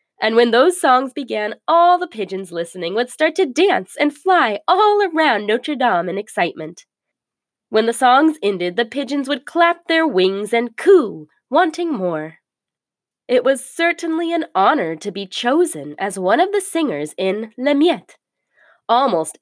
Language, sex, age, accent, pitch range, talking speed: English, female, 20-39, American, 205-335 Hz, 160 wpm